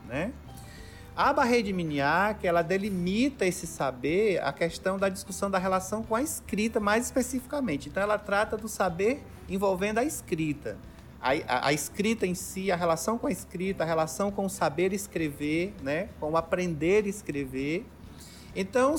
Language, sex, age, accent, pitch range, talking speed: Portuguese, male, 40-59, Brazilian, 160-220 Hz, 170 wpm